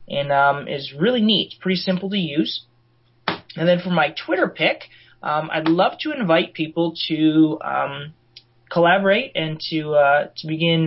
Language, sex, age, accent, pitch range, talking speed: English, male, 30-49, American, 135-170 Hz, 165 wpm